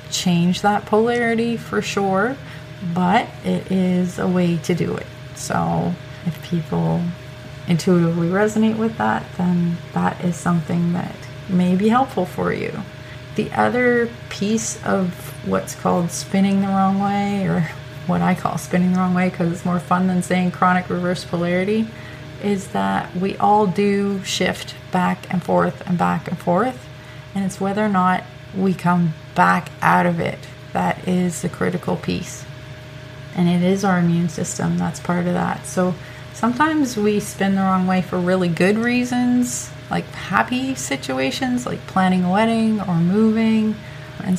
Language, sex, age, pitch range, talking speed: English, female, 30-49, 150-195 Hz, 160 wpm